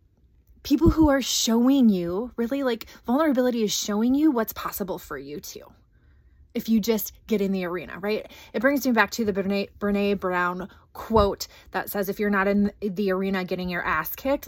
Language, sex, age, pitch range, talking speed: English, female, 20-39, 200-240 Hz, 190 wpm